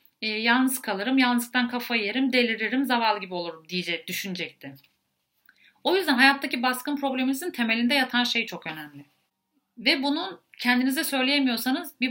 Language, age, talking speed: Turkish, 40-59, 130 wpm